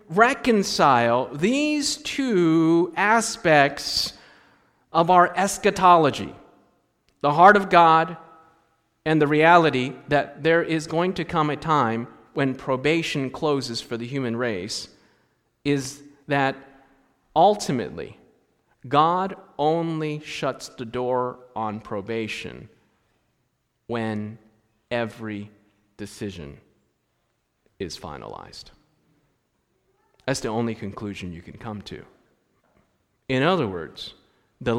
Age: 40-59